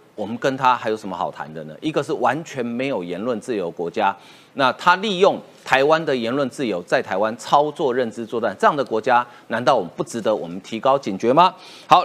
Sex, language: male, Chinese